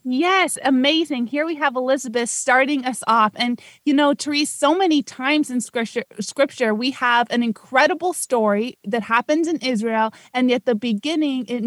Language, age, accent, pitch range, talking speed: English, 20-39, American, 225-270 Hz, 170 wpm